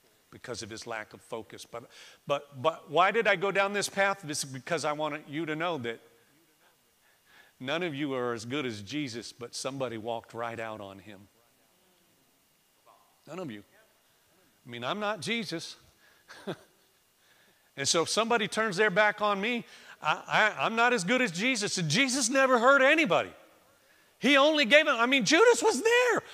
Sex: male